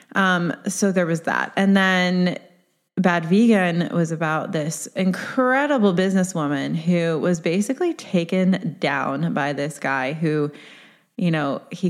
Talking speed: 130 wpm